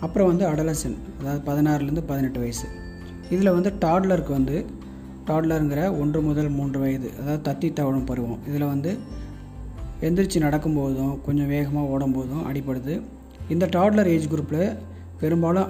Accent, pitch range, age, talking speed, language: native, 135-160 Hz, 30-49, 125 wpm, Tamil